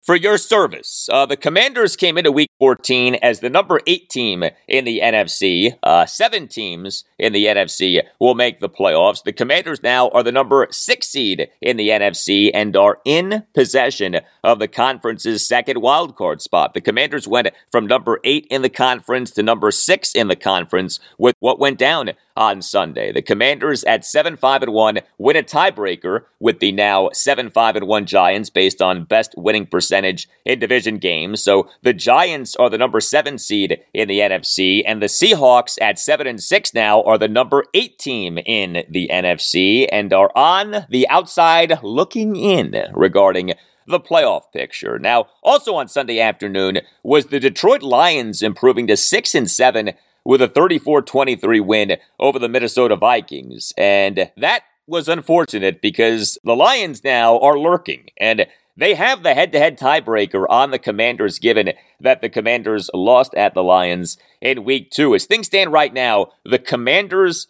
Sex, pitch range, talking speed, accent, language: male, 105-160 Hz, 175 wpm, American, English